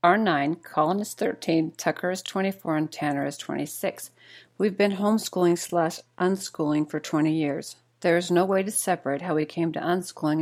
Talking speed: 180 wpm